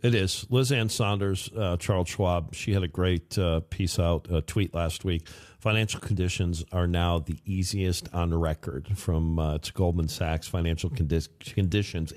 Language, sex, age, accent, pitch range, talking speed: English, male, 50-69, American, 85-100 Hz, 170 wpm